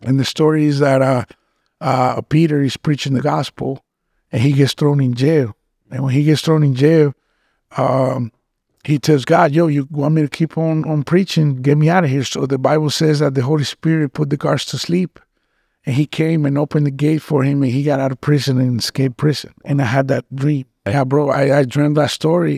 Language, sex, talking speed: English, male, 230 wpm